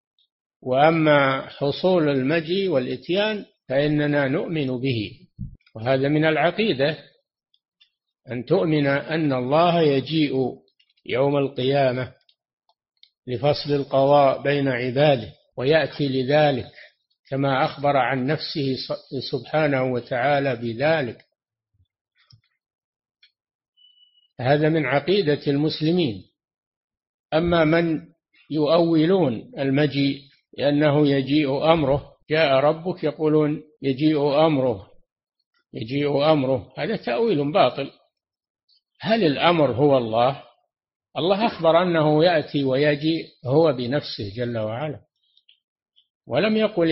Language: Arabic